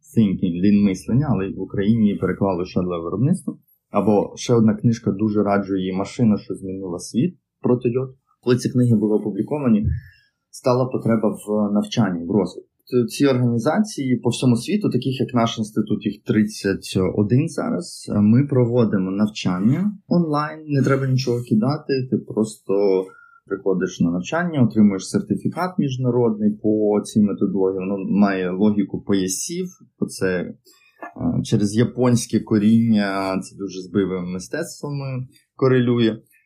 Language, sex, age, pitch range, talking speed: Ukrainian, male, 20-39, 105-130 Hz, 125 wpm